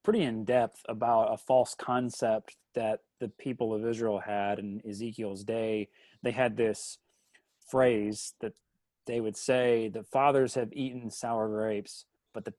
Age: 30-49